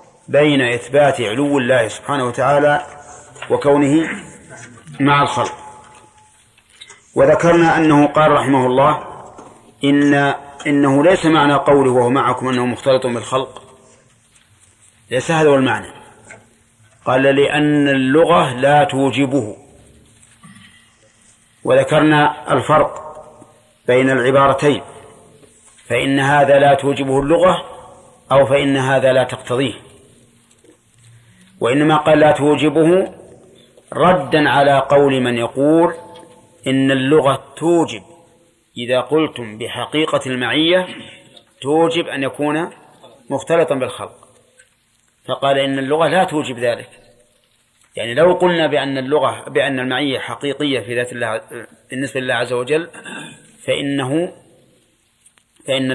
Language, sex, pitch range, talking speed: Arabic, male, 125-155 Hz, 100 wpm